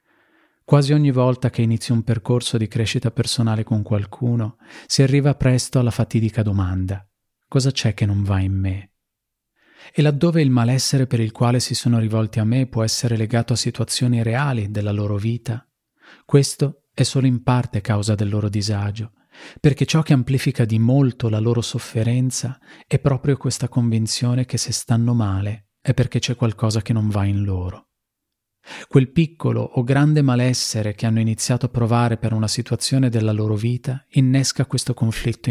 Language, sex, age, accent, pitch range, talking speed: Italian, male, 40-59, native, 110-130 Hz, 170 wpm